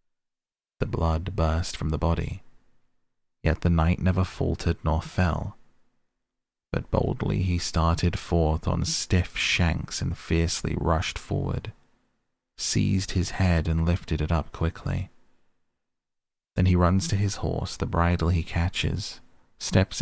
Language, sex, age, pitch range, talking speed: English, male, 30-49, 80-95 Hz, 130 wpm